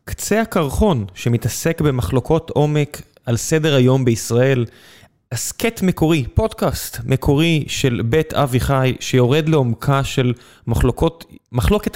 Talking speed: 105 wpm